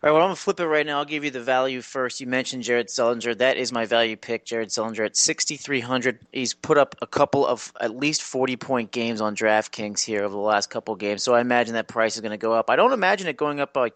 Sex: male